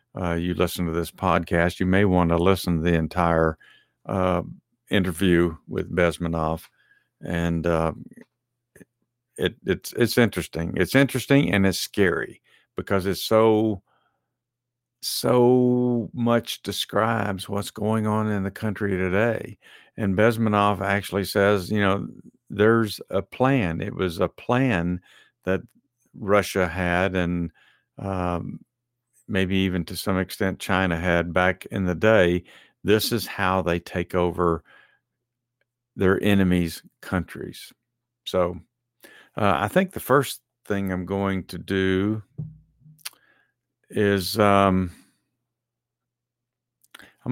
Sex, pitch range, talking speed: male, 90-115 Hz, 120 wpm